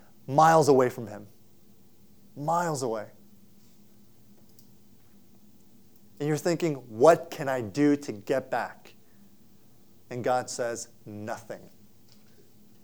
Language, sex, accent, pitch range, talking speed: English, male, American, 115-160 Hz, 95 wpm